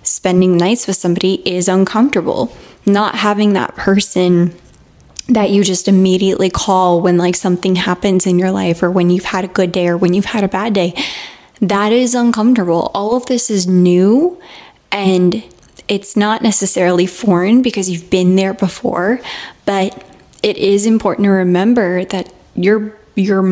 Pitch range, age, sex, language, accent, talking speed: 180-205 Hz, 10-29, female, English, American, 160 wpm